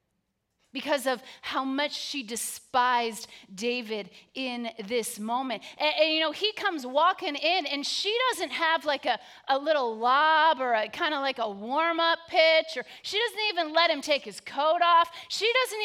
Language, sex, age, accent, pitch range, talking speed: English, female, 30-49, American, 225-310 Hz, 180 wpm